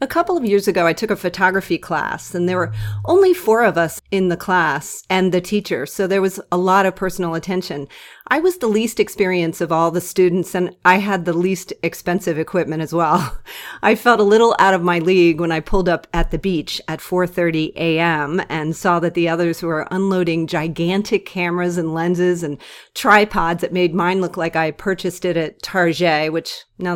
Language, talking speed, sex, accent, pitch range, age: English, 205 wpm, female, American, 165-200 Hz, 40-59